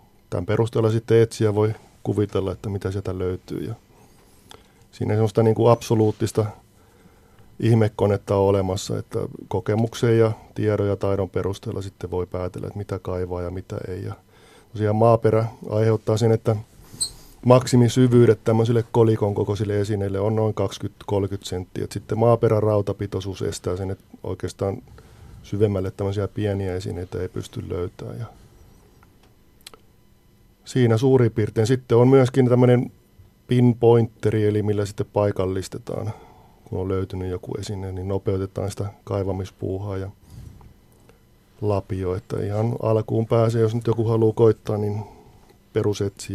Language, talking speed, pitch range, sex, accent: Finnish, 125 wpm, 100-115 Hz, male, native